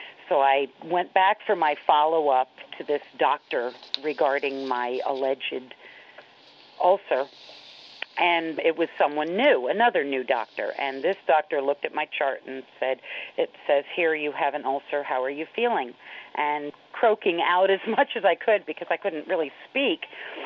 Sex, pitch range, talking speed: female, 140-180 Hz, 160 wpm